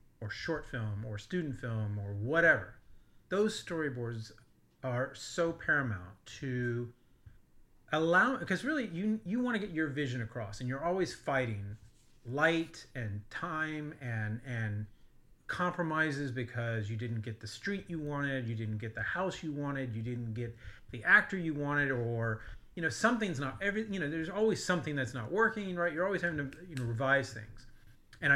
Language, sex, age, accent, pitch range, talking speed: English, male, 30-49, American, 110-150 Hz, 170 wpm